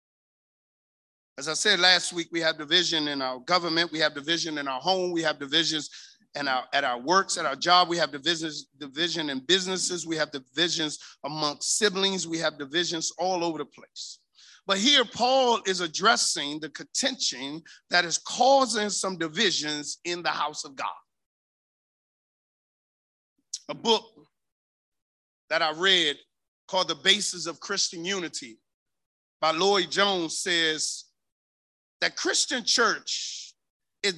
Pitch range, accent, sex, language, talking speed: 160-230 Hz, American, male, English, 140 wpm